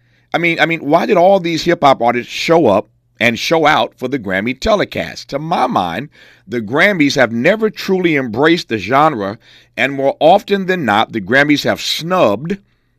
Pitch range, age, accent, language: 120-165 Hz, 50-69, American, English